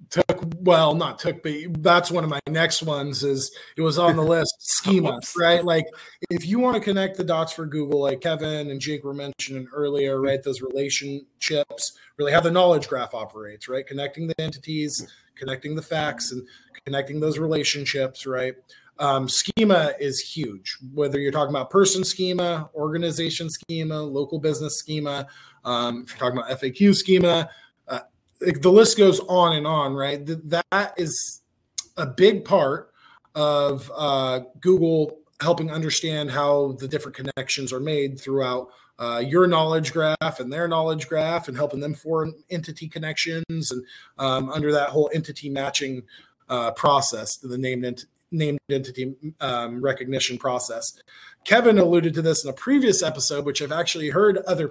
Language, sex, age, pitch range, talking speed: English, male, 20-39, 135-170 Hz, 160 wpm